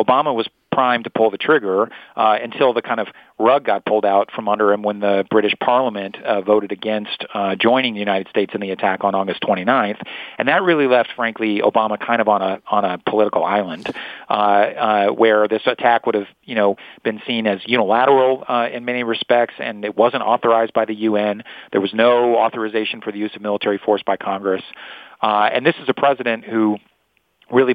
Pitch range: 105-120 Hz